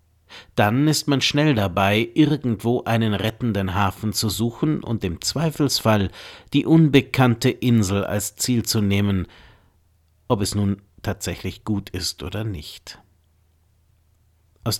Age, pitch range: 50-69, 95-130 Hz